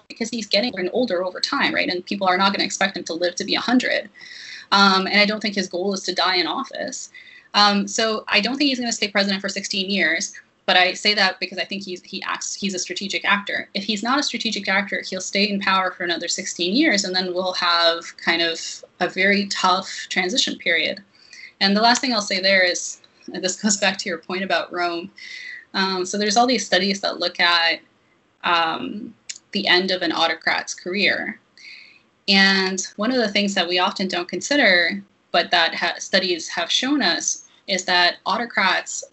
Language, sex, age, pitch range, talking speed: English, female, 20-39, 180-220 Hz, 200 wpm